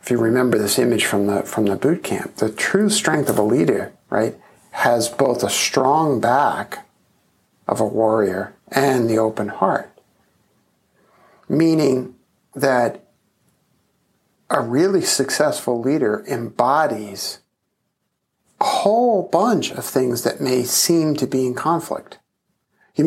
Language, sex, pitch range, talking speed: English, male, 120-165 Hz, 130 wpm